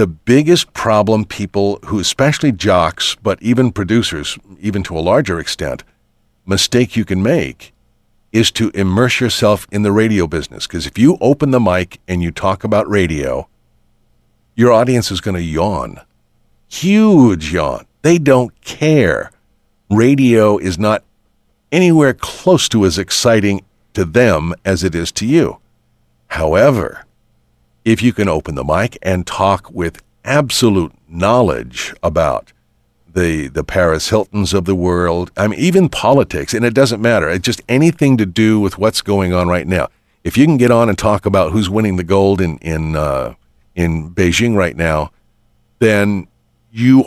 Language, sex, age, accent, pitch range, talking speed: English, male, 50-69, American, 95-120 Hz, 160 wpm